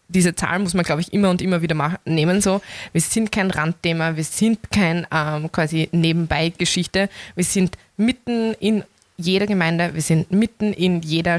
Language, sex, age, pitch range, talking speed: German, female, 20-39, 160-190 Hz, 180 wpm